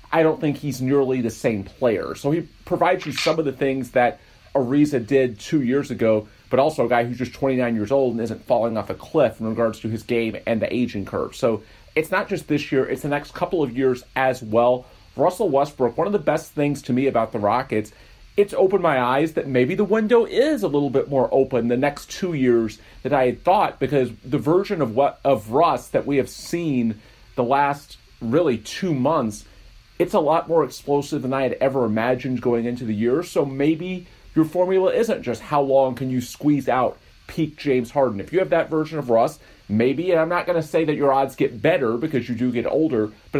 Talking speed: 225 wpm